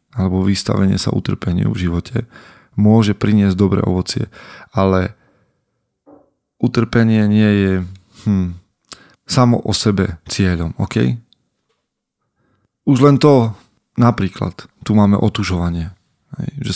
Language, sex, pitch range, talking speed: Slovak, male, 100-115 Hz, 100 wpm